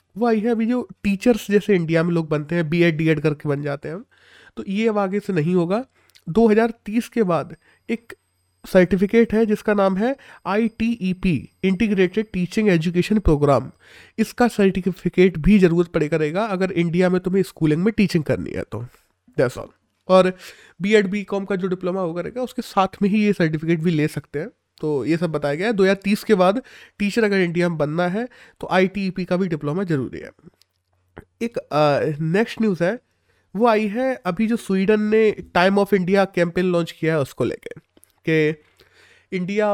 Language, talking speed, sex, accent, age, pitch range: Hindi, 180 wpm, male, native, 20-39, 165-210 Hz